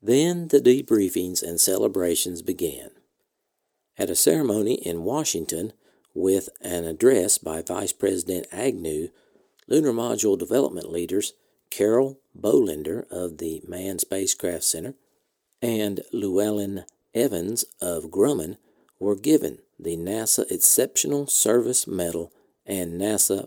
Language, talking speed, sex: English, 110 wpm, male